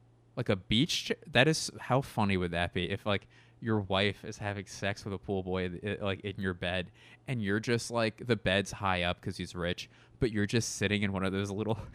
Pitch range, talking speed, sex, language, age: 100-130 Hz, 230 wpm, male, English, 20-39